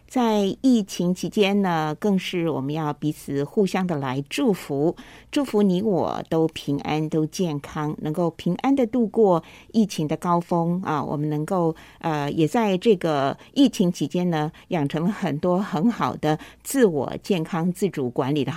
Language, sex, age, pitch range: Chinese, female, 50-69, 150-195 Hz